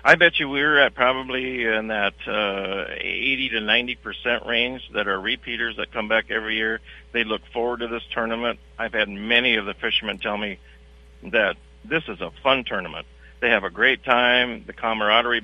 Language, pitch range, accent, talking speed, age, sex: English, 105-130 Hz, American, 185 wpm, 50-69, male